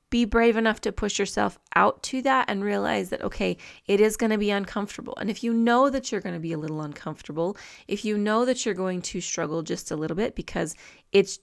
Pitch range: 185-230 Hz